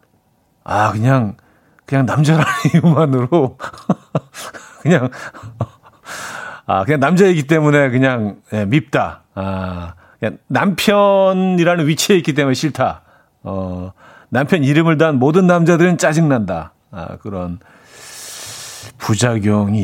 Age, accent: 40-59, native